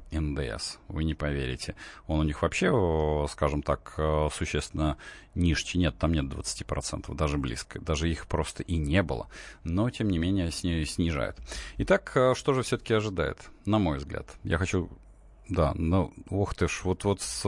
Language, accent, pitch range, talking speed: Russian, native, 80-100 Hz, 160 wpm